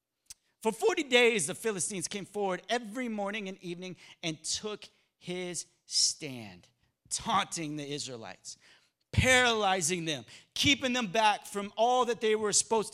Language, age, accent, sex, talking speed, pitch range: English, 40-59, American, male, 135 wpm, 155-225 Hz